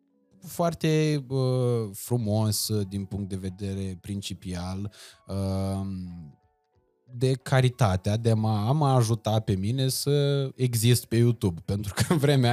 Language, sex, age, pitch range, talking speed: Romanian, male, 20-39, 105-140 Hz, 125 wpm